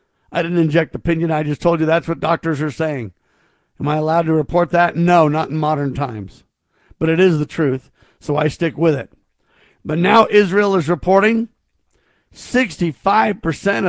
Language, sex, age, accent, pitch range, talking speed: English, male, 50-69, American, 150-195 Hz, 175 wpm